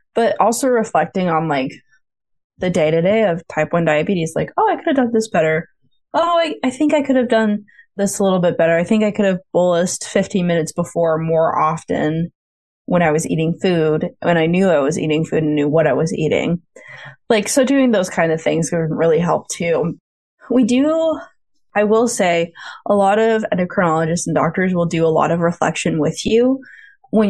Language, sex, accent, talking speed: English, female, American, 205 wpm